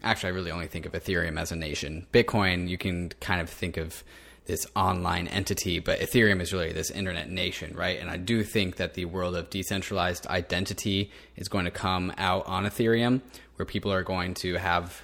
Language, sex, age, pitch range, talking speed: English, male, 20-39, 90-105 Hz, 205 wpm